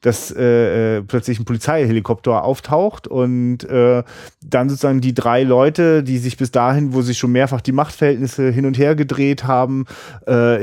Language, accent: German, German